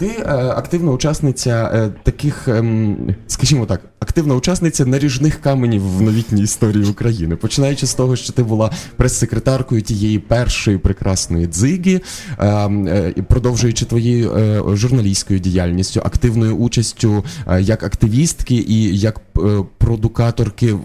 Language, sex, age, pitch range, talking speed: Ukrainian, male, 20-39, 105-125 Hz, 105 wpm